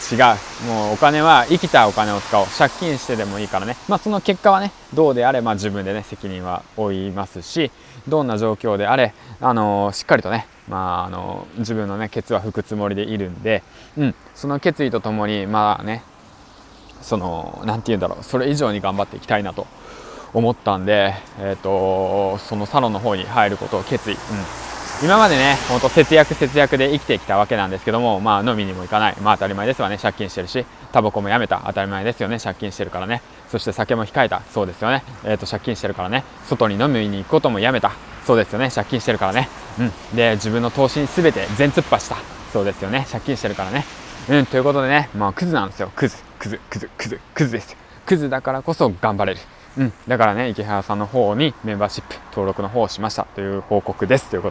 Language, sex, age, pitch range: Japanese, male, 20-39, 100-125 Hz